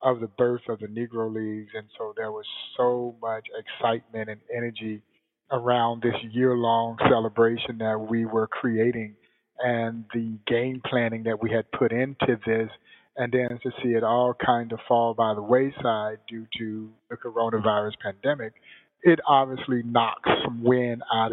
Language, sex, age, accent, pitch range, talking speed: English, male, 30-49, American, 115-150 Hz, 160 wpm